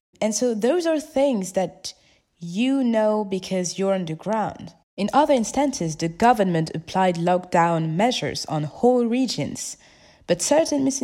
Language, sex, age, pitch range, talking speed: English, female, 20-39, 165-240 Hz, 140 wpm